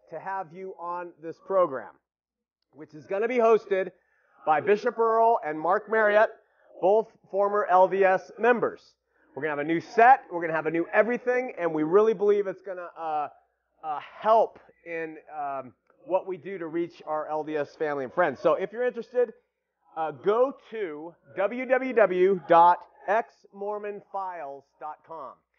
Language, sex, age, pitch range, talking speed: English, male, 30-49, 160-220 Hz, 155 wpm